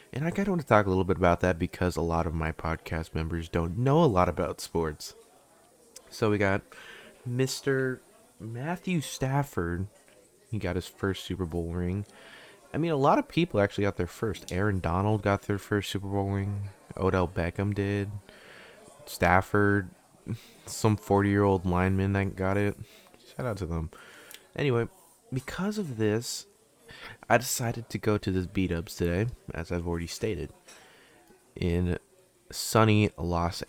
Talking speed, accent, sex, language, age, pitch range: 160 wpm, American, male, English, 20-39, 90-110 Hz